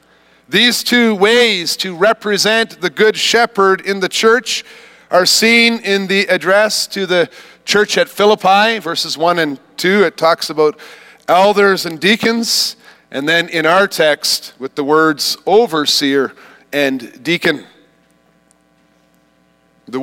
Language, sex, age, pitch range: English, male, 40-59, 175-225 Hz